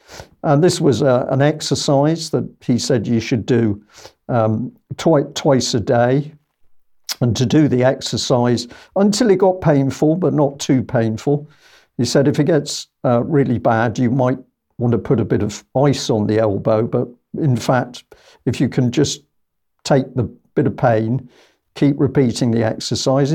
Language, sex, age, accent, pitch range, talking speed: English, male, 50-69, British, 120-145 Hz, 165 wpm